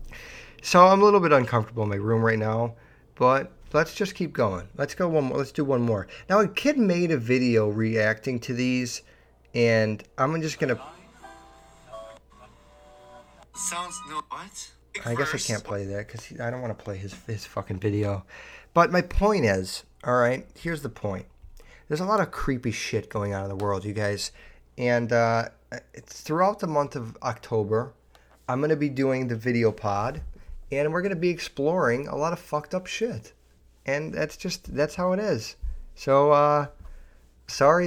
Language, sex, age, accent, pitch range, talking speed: English, male, 30-49, American, 110-150 Hz, 185 wpm